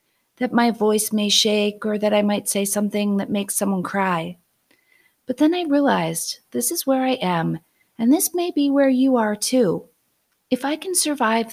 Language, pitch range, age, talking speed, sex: English, 190-265 Hz, 40-59, 185 wpm, female